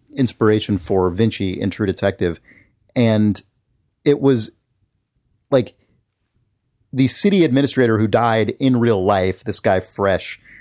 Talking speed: 120 wpm